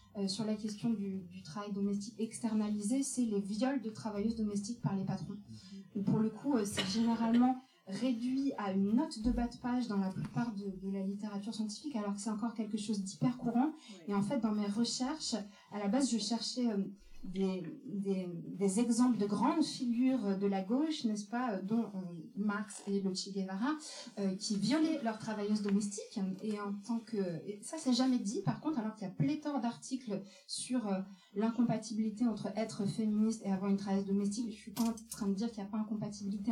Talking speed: 205 wpm